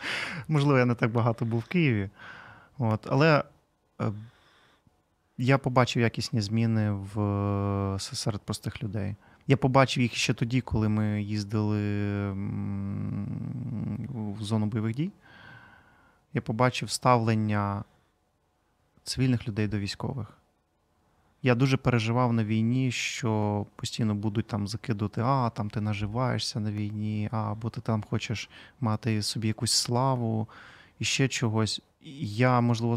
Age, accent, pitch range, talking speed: 20-39, native, 105-125 Hz, 115 wpm